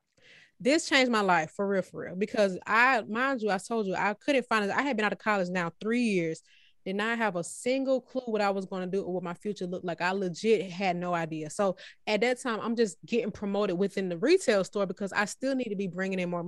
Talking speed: 260 wpm